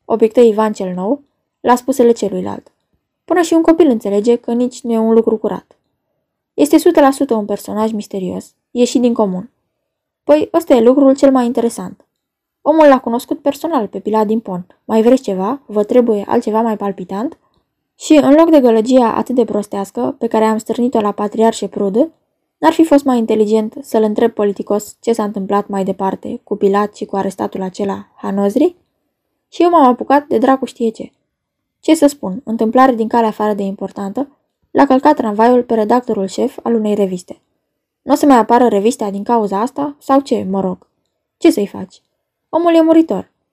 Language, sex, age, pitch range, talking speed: Romanian, female, 10-29, 210-275 Hz, 180 wpm